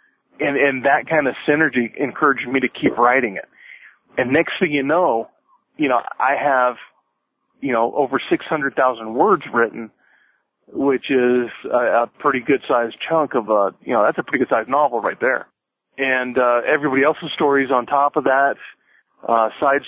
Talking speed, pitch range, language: 175 wpm, 120-135 Hz, English